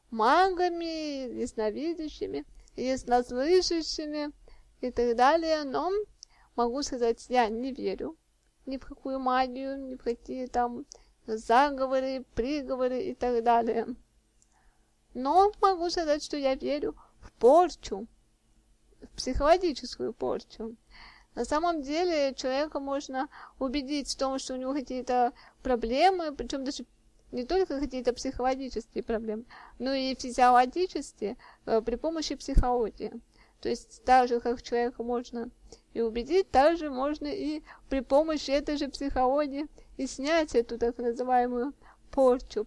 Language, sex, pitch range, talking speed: Russian, female, 245-300 Hz, 125 wpm